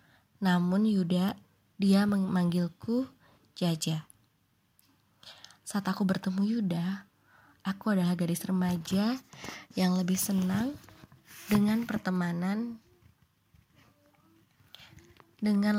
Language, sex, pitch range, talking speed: Indonesian, female, 180-205 Hz, 70 wpm